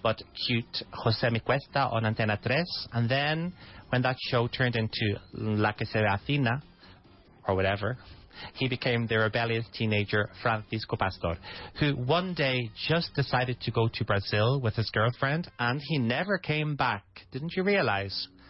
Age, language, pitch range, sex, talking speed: 30-49, English, 105-140 Hz, male, 150 wpm